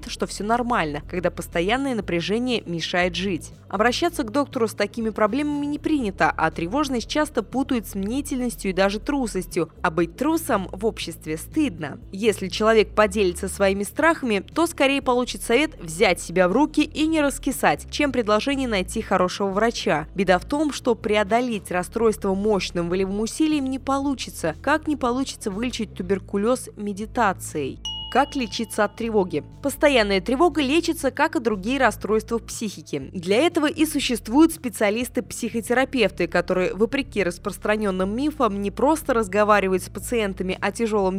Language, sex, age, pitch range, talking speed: Russian, female, 20-39, 195-270 Hz, 145 wpm